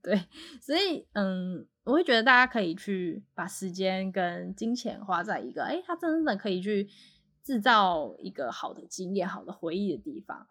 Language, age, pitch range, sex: Chinese, 10-29, 180-220 Hz, female